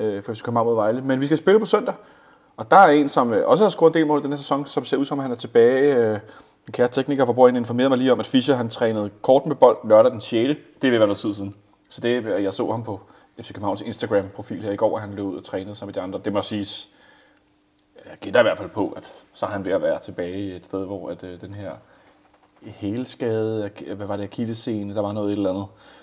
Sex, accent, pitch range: male, native, 105-140 Hz